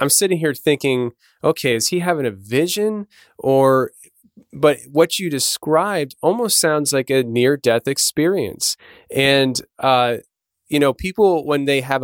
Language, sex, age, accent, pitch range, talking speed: English, male, 20-39, American, 115-140 Hz, 150 wpm